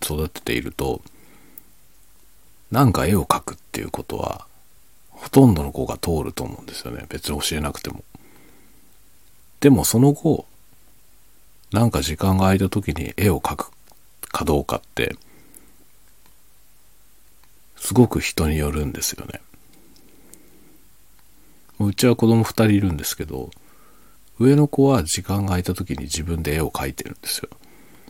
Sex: male